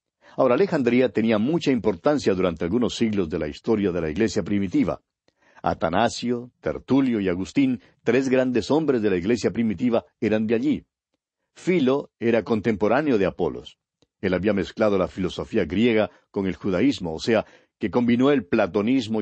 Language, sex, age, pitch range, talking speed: Spanish, male, 50-69, 100-130 Hz, 155 wpm